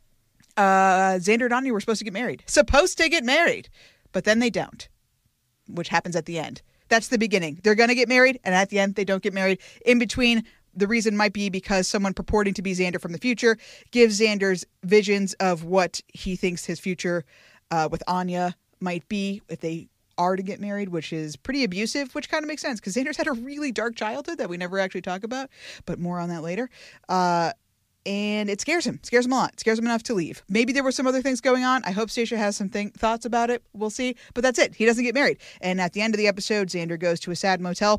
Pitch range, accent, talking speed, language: 180-240 Hz, American, 245 wpm, English